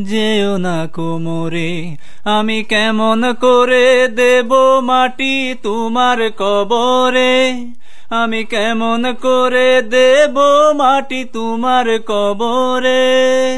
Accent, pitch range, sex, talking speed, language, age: Indian, 170-255 Hz, male, 75 wpm, Italian, 30-49